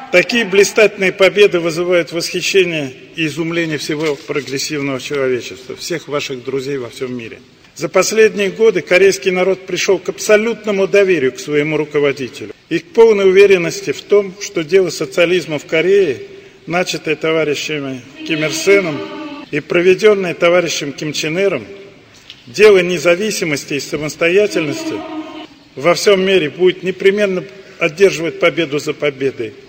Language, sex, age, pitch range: Russian, male, 40-59, 145-195 Hz